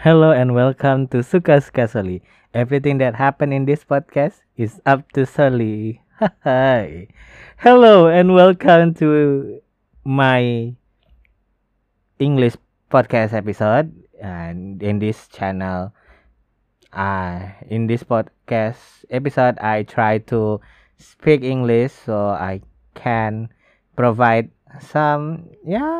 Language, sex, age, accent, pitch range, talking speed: Indonesian, male, 20-39, native, 105-140 Hz, 105 wpm